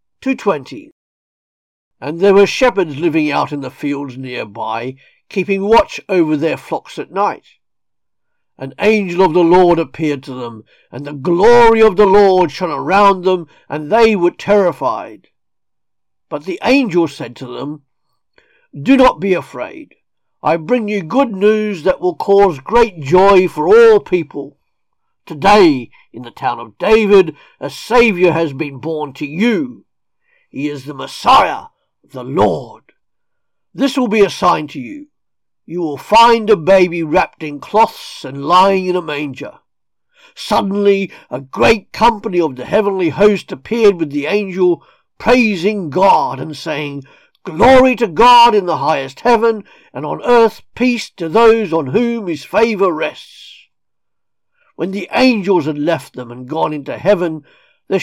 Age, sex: 50-69, male